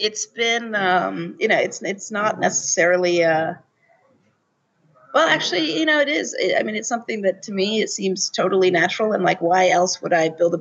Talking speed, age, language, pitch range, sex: 205 wpm, 30-49, English, 170-205 Hz, female